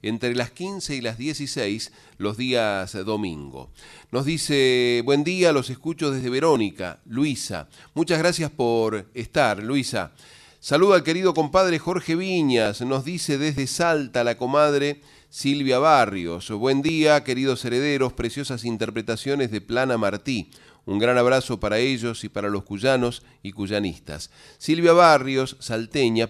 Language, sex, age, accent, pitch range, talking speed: Spanish, male, 40-59, Argentinian, 115-150 Hz, 135 wpm